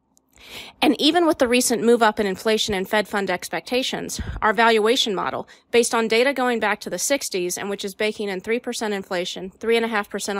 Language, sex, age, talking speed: English, female, 30-49, 185 wpm